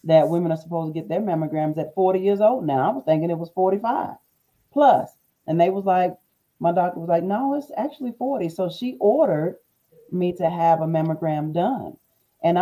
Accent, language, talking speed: American, English, 200 wpm